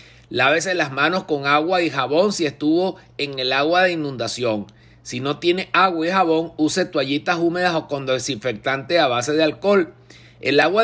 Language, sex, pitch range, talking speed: Spanish, male, 140-175 Hz, 175 wpm